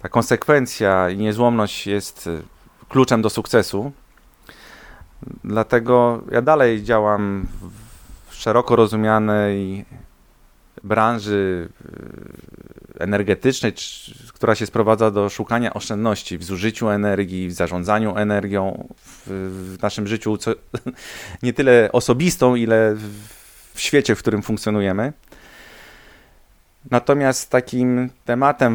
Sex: male